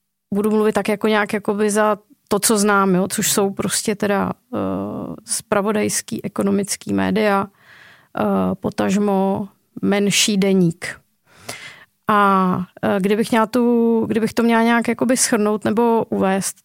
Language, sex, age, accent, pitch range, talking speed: Czech, female, 30-49, native, 190-215 Hz, 125 wpm